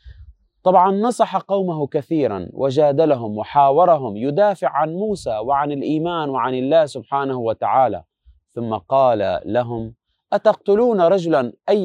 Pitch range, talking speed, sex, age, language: 120-185 Hz, 105 wpm, male, 30-49, Arabic